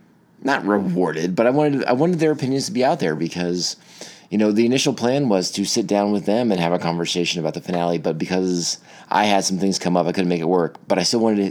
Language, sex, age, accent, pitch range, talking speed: English, male, 20-39, American, 90-115 Hz, 255 wpm